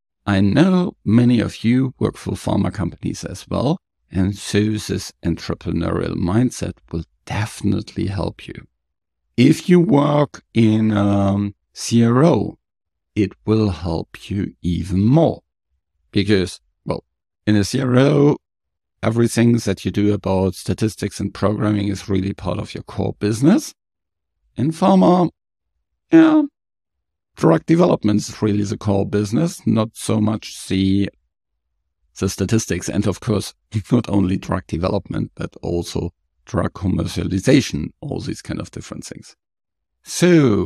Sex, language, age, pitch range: male, English, 50-69, 85-110 Hz